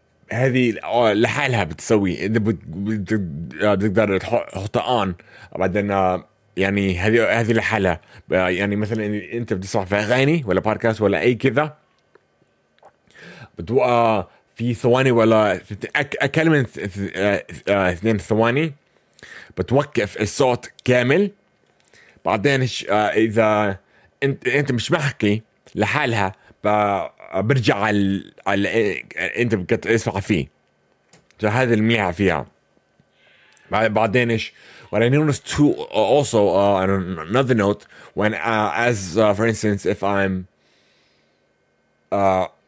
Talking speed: 75 wpm